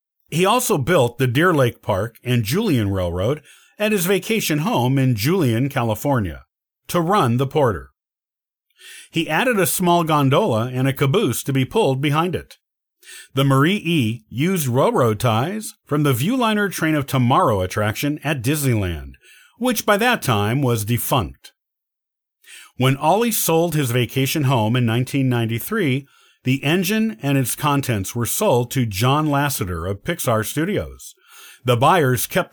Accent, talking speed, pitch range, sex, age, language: American, 145 wpm, 115-165 Hz, male, 50-69, English